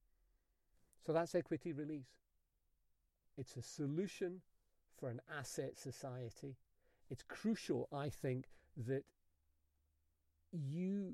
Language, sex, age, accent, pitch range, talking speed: English, male, 40-59, British, 120-145 Hz, 90 wpm